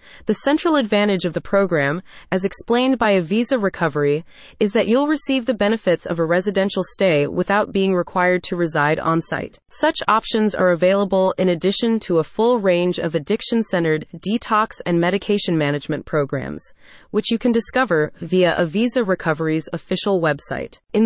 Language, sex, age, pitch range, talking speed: English, female, 30-49, 170-225 Hz, 155 wpm